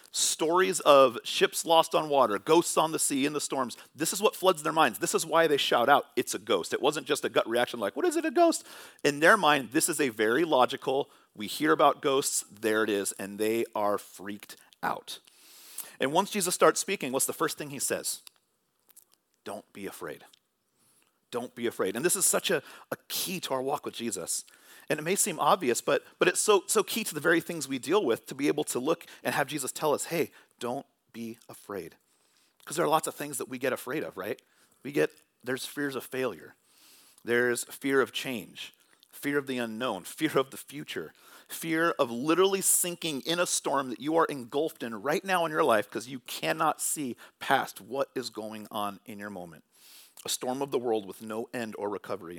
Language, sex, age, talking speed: English, male, 40-59, 220 wpm